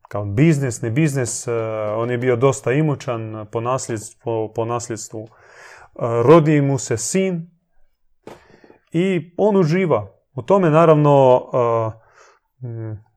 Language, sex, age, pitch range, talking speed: Croatian, male, 30-49, 115-150 Hz, 130 wpm